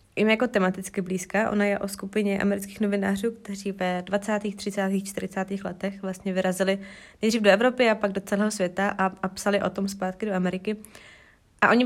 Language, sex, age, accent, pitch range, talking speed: Czech, female, 20-39, native, 195-235 Hz, 175 wpm